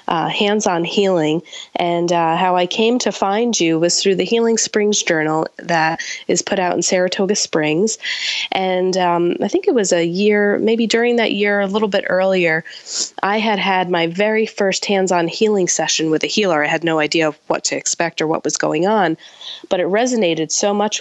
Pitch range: 165-205 Hz